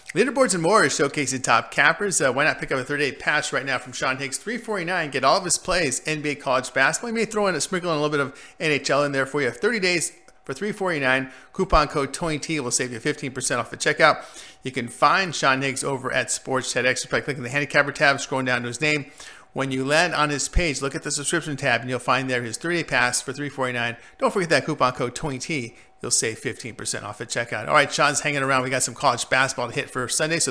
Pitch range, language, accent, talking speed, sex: 130-160 Hz, English, American, 245 wpm, male